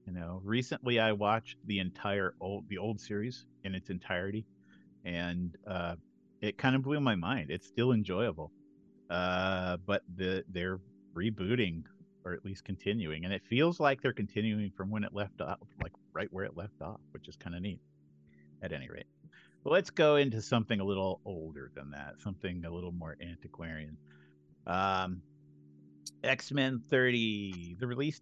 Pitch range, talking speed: 90-120 Hz, 170 wpm